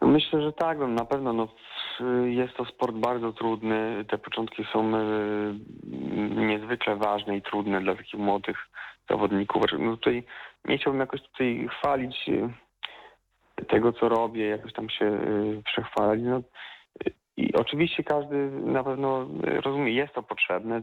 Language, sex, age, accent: Polish, male, 40-59, native